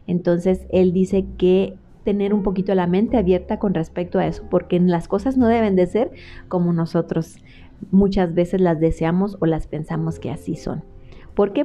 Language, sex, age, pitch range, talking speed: Spanish, female, 30-49, 175-215 Hz, 180 wpm